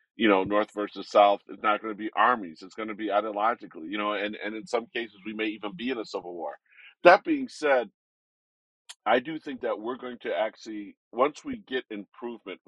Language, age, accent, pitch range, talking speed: English, 40-59, American, 105-135 Hz, 220 wpm